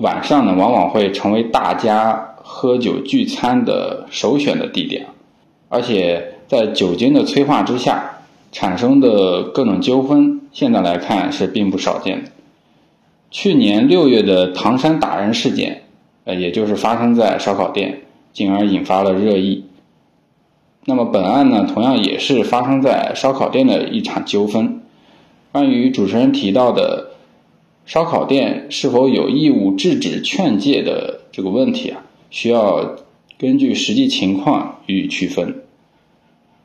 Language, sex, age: Chinese, male, 20-39